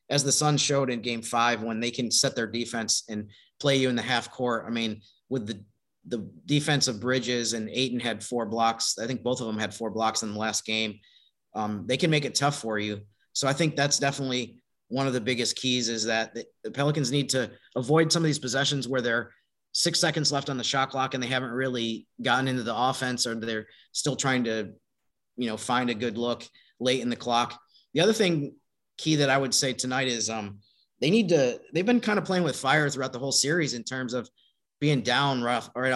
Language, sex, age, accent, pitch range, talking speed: English, male, 30-49, American, 115-135 Hz, 230 wpm